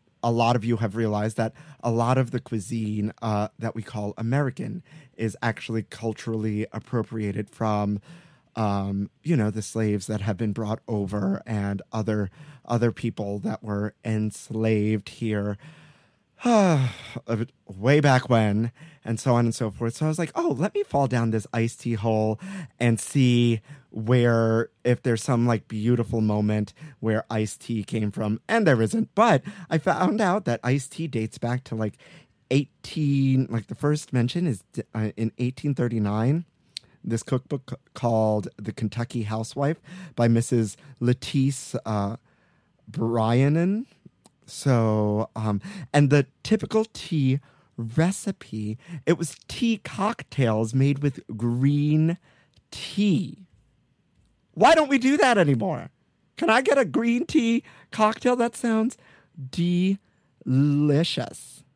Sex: male